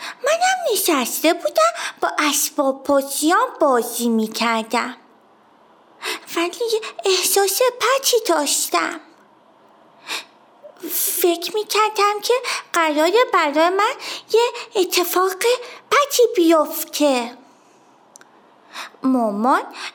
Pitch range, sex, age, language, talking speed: 270-365 Hz, female, 30-49, Persian, 70 wpm